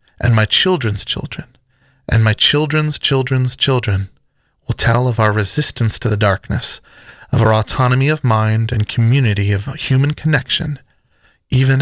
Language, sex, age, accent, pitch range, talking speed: English, male, 30-49, American, 110-135 Hz, 140 wpm